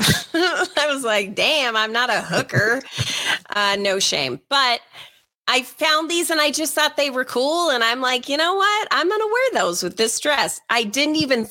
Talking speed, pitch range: 205 wpm, 200-290 Hz